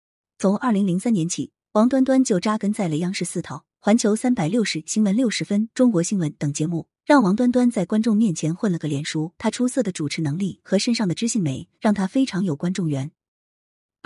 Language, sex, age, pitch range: Chinese, female, 20-39, 165-220 Hz